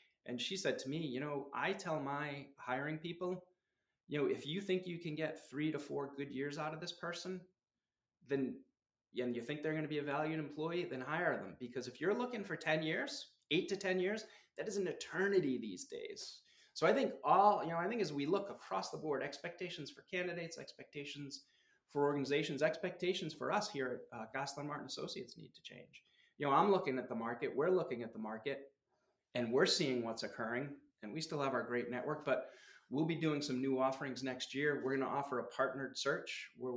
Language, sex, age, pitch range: English, male, 30-49, 130-160 Hz